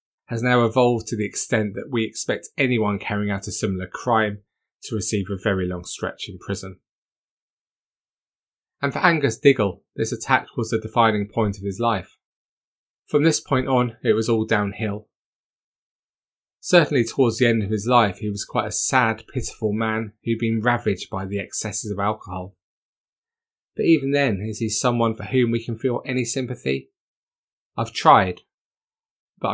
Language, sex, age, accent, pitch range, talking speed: English, male, 20-39, British, 105-140 Hz, 165 wpm